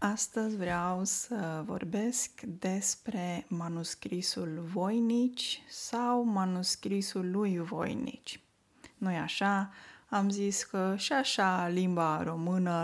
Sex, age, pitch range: female, 20-39, 190-255 Hz